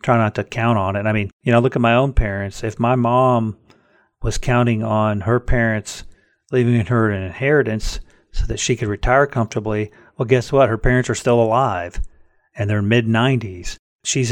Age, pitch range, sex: 40-59, 105-125 Hz, male